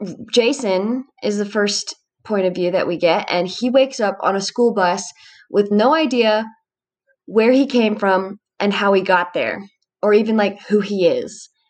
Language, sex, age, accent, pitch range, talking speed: English, female, 20-39, American, 190-235 Hz, 185 wpm